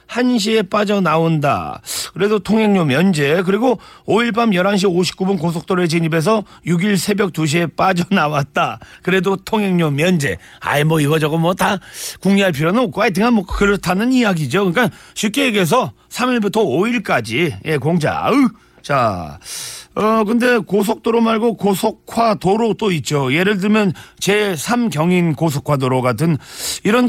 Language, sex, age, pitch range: Korean, male, 40-59, 165-205 Hz